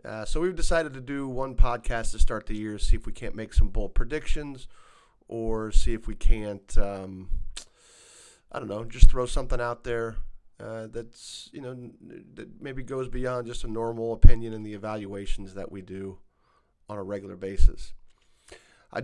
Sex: male